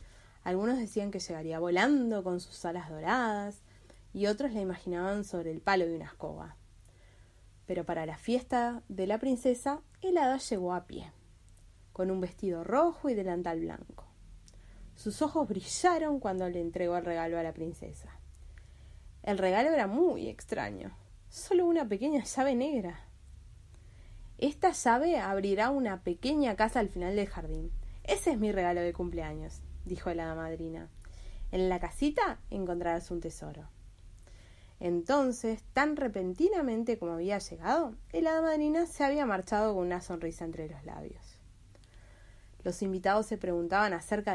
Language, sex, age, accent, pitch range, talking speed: Spanish, female, 20-39, Argentinian, 160-245 Hz, 145 wpm